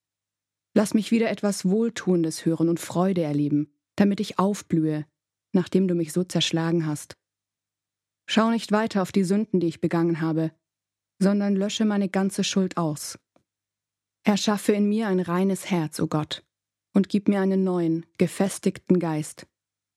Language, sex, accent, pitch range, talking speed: German, female, German, 150-205 Hz, 150 wpm